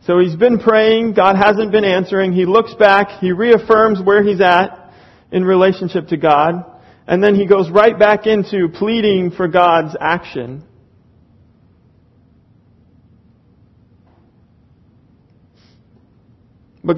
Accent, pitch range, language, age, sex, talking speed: American, 140-200 Hz, English, 40-59, male, 115 wpm